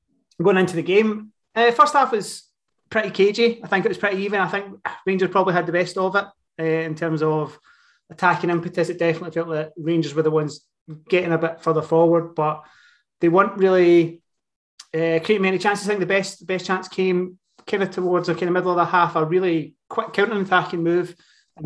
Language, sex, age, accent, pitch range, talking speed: English, male, 30-49, British, 165-195 Hz, 210 wpm